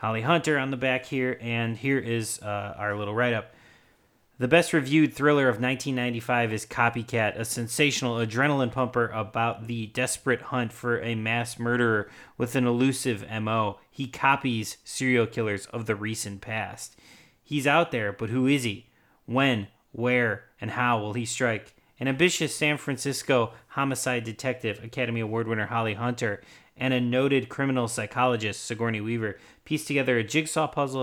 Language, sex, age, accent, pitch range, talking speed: English, male, 30-49, American, 110-130 Hz, 155 wpm